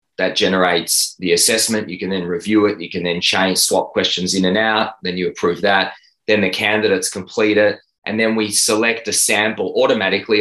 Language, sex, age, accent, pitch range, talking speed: English, male, 20-39, Australian, 100-120 Hz, 195 wpm